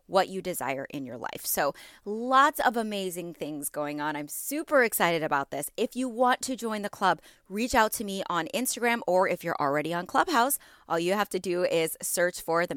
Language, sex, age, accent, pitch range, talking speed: English, female, 20-39, American, 160-225 Hz, 215 wpm